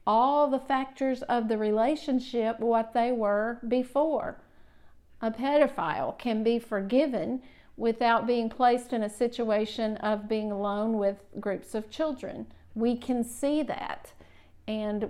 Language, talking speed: English, 130 wpm